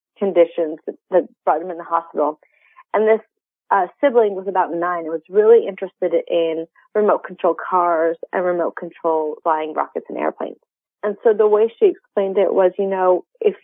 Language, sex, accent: English, female, American